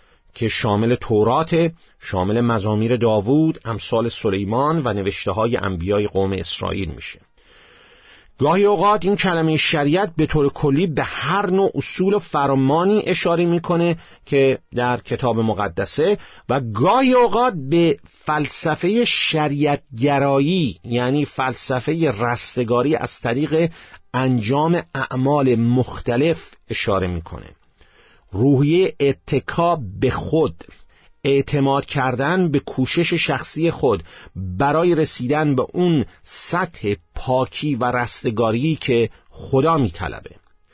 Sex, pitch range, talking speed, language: male, 120-165 Hz, 110 wpm, Persian